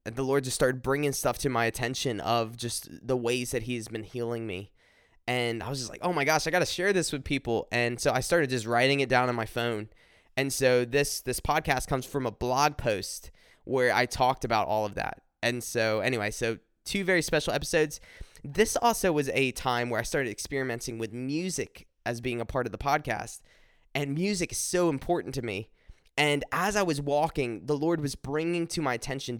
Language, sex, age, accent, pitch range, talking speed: English, male, 20-39, American, 120-150 Hz, 220 wpm